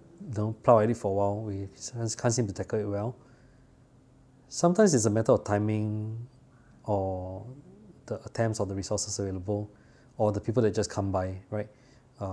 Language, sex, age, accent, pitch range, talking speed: English, male, 20-39, Malaysian, 105-130 Hz, 180 wpm